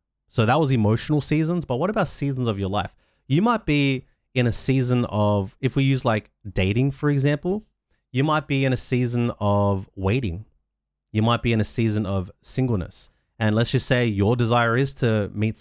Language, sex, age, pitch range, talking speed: English, male, 30-49, 95-130 Hz, 195 wpm